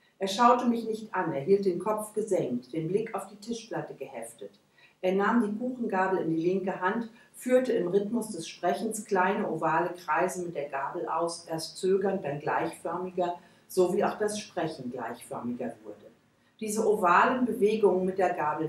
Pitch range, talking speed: 165-225 Hz, 170 wpm